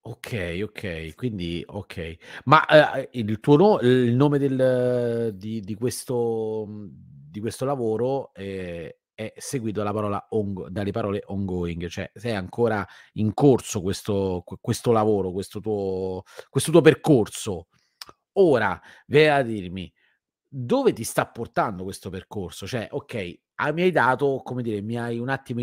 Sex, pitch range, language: male, 105-140 Hz, Italian